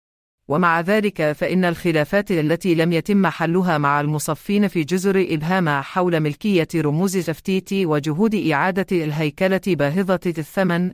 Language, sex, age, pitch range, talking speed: English, female, 40-59, 150-185 Hz, 120 wpm